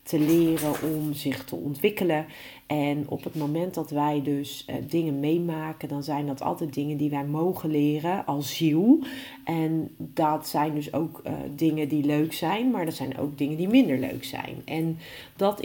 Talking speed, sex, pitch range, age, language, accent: 185 wpm, female, 145-165 Hz, 40-59, Dutch, Dutch